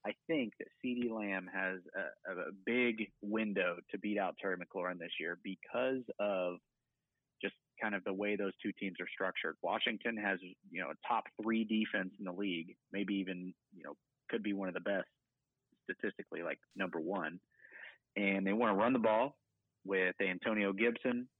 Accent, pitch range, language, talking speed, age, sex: American, 100-120 Hz, English, 180 wpm, 30-49, male